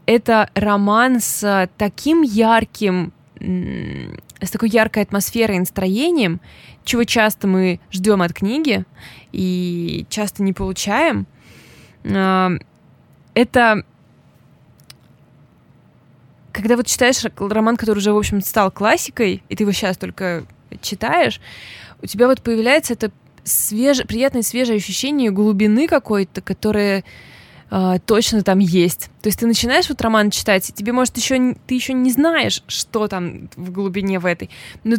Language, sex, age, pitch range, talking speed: Russian, female, 20-39, 190-230 Hz, 130 wpm